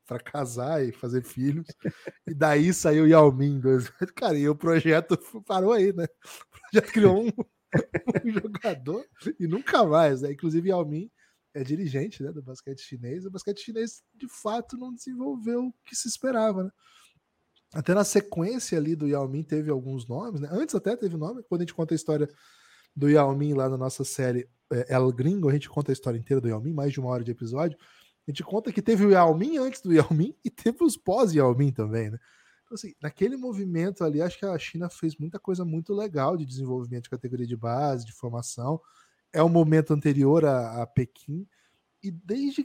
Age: 20-39